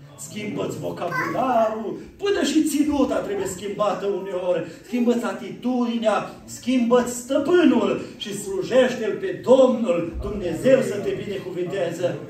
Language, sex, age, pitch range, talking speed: Romanian, male, 40-59, 170-255 Hz, 100 wpm